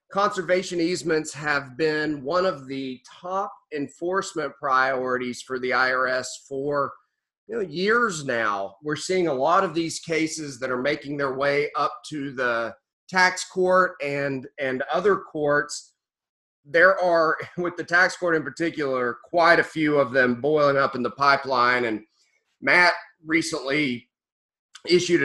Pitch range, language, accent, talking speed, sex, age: 125-165 Hz, English, American, 140 wpm, male, 40-59